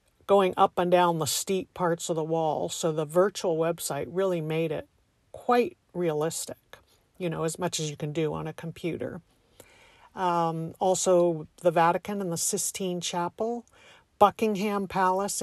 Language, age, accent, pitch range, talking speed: English, 50-69, American, 170-200 Hz, 155 wpm